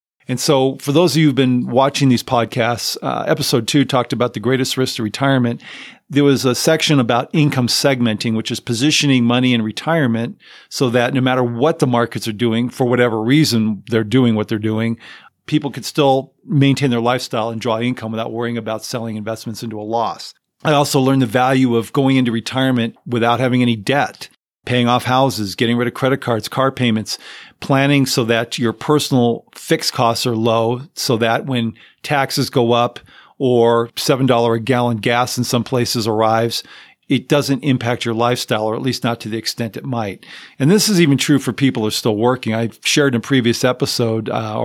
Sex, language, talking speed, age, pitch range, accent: male, English, 200 wpm, 40-59, 115-135 Hz, American